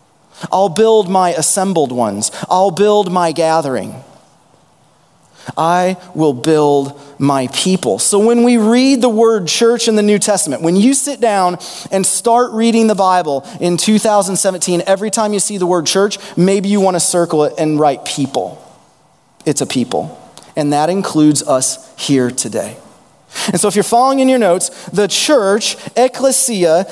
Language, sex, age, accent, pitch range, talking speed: English, male, 30-49, American, 165-225 Hz, 160 wpm